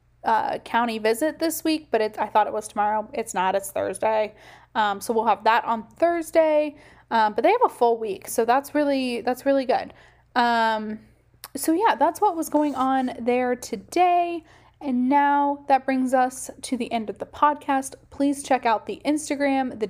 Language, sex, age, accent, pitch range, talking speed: English, female, 10-29, American, 225-285 Hz, 190 wpm